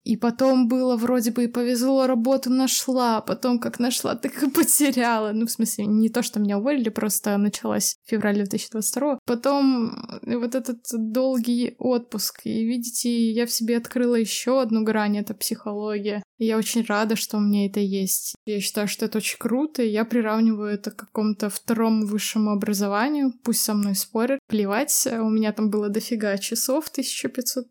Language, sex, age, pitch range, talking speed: Russian, female, 20-39, 210-240 Hz, 175 wpm